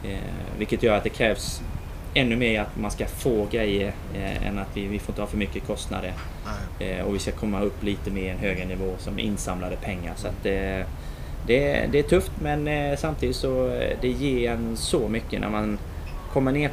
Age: 20-39